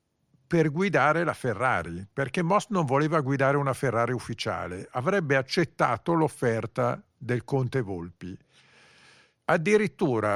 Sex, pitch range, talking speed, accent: male, 110-155 Hz, 110 wpm, native